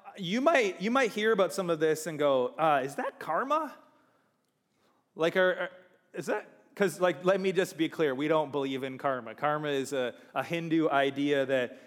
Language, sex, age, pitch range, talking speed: English, male, 20-39, 135-180 Hz, 195 wpm